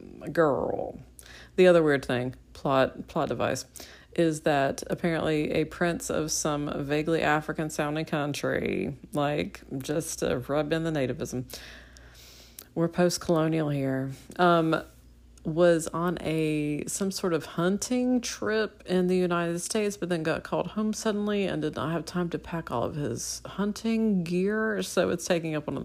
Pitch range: 130-175 Hz